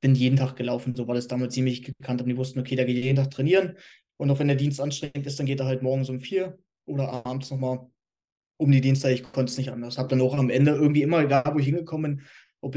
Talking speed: 270 wpm